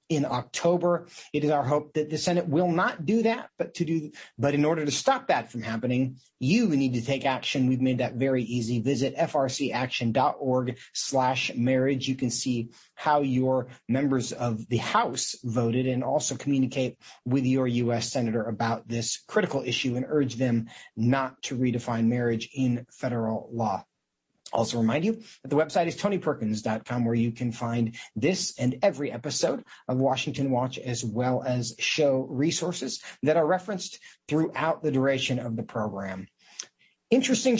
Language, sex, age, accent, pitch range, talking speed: English, male, 30-49, American, 125-165 Hz, 165 wpm